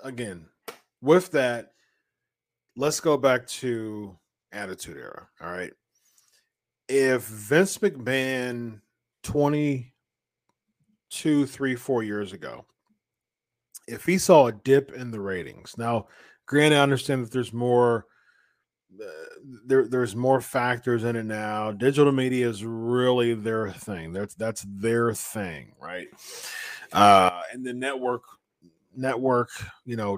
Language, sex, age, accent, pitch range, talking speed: English, male, 40-59, American, 110-145 Hz, 120 wpm